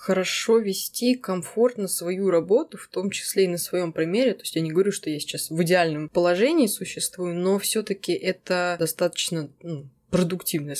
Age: 20-39